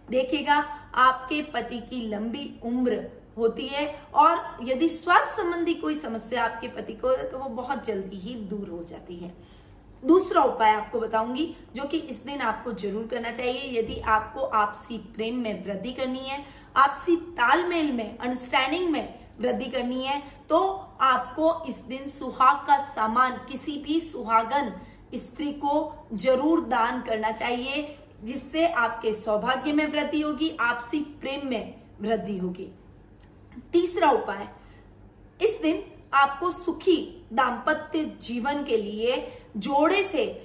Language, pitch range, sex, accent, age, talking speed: Hindi, 230-300 Hz, female, native, 20-39, 140 wpm